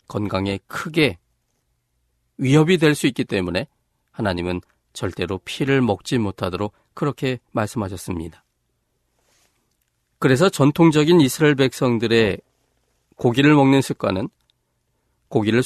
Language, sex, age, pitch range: Korean, male, 40-59, 100-145 Hz